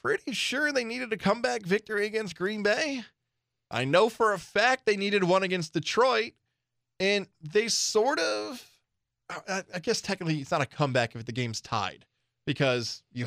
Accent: American